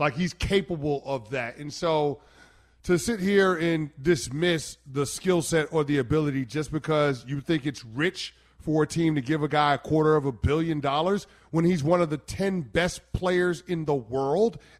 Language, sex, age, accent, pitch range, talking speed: English, male, 30-49, American, 145-185 Hz, 195 wpm